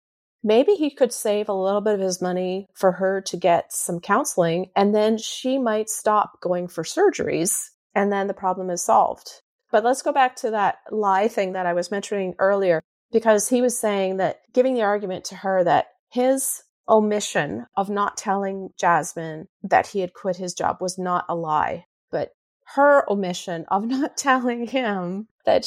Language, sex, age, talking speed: English, female, 30-49, 180 wpm